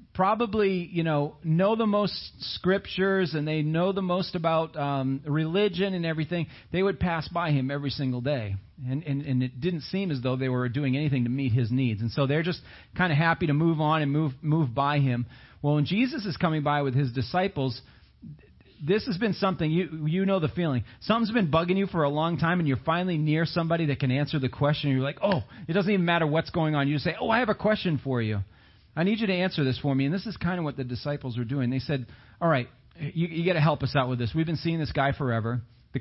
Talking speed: 250 wpm